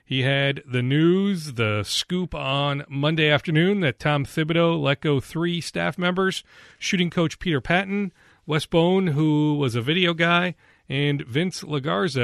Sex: male